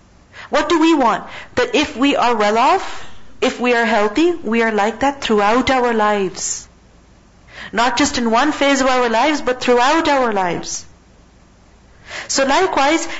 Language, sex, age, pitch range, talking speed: English, female, 50-69, 215-265 Hz, 160 wpm